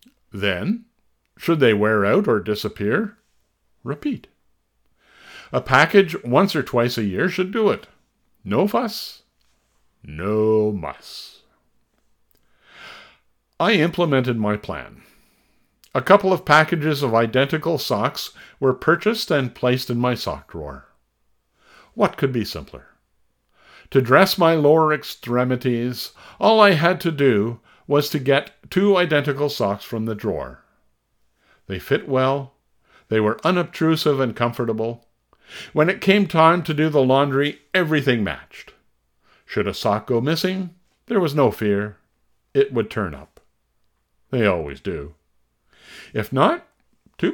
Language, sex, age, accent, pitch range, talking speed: English, male, 60-79, American, 110-175 Hz, 130 wpm